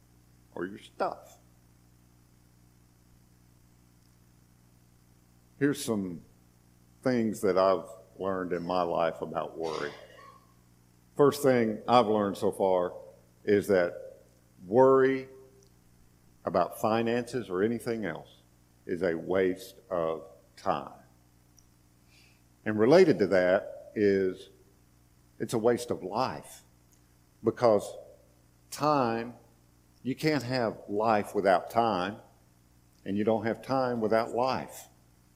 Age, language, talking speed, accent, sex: 50-69, English, 100 wpm, American, male